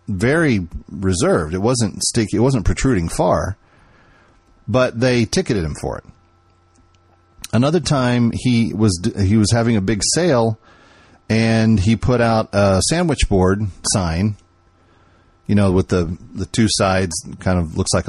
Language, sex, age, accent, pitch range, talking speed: English, male, 40-59, American, 90-115 Hz, 145 wpm